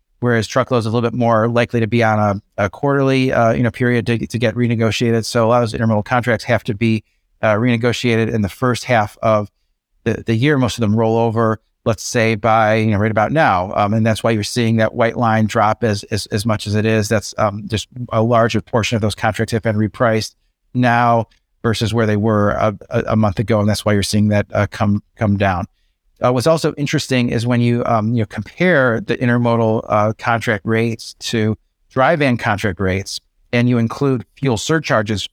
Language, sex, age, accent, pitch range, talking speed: English, male, 30-49, American, 110-120 Hz, 220 wpm